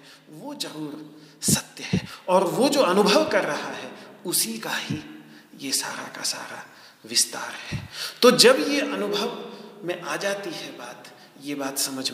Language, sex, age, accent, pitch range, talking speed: Hindi, male, 40-59, native, 150-195 Hz, 155 wpm